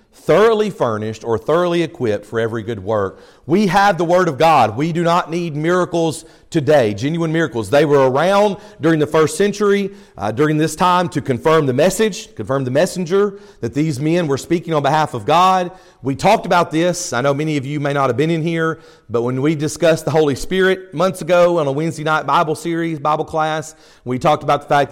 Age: 40-59